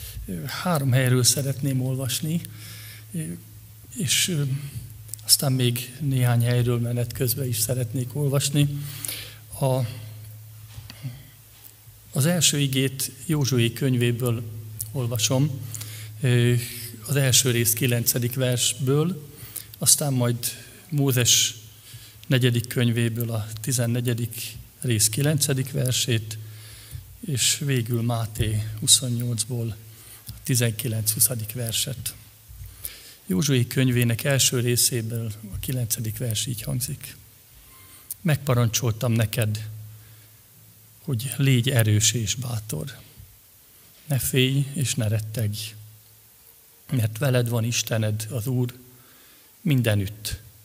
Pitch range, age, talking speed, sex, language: 110-130 Hz, 50-69, 85 wpm, male, Hungarian